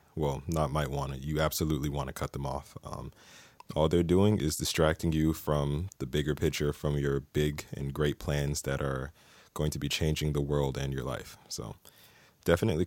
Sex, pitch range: male, 70-85 Hz